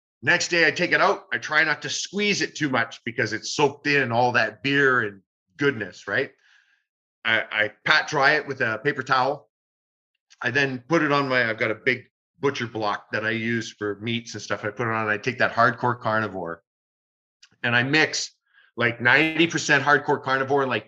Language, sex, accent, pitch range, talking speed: English, male, American, 115-140 Hz, 200 wpm